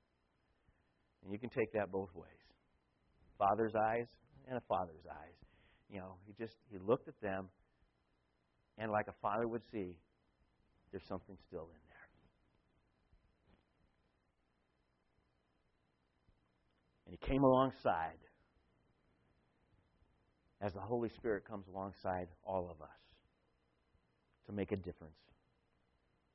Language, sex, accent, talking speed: English, male, American, 110 wpm